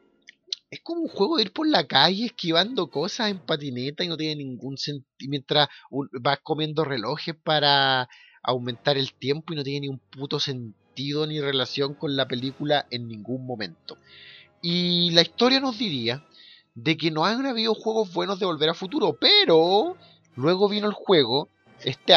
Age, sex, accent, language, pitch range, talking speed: 30-49, male, Mexican, Spanish, 125-170 Hz, 170 wpm